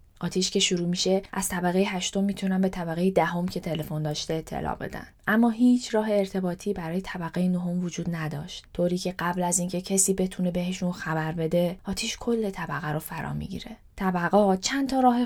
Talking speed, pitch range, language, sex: 185 wpm, 165-195 Hz, Persian, female